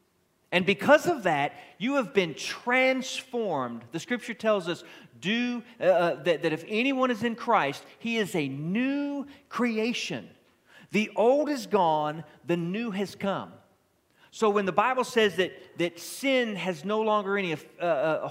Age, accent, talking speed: 40-59, American, 155 wpm